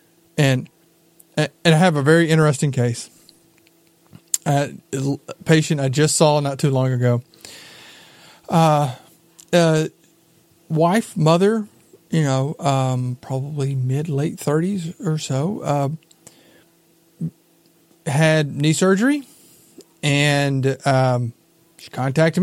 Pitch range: 140-175 Hz